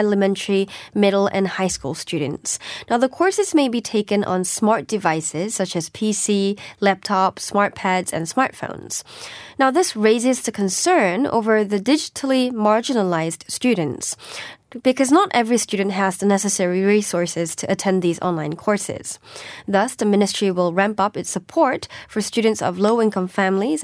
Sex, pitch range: female, 185-230 Hz